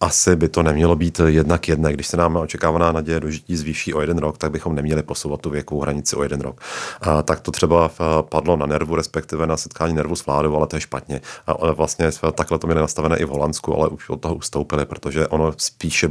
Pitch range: 80-95 Hz